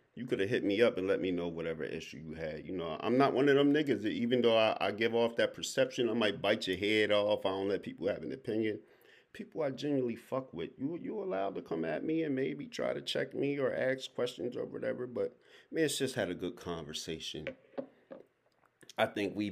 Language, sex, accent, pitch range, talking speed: English, male, American, 100-160 Hz, 245 wpm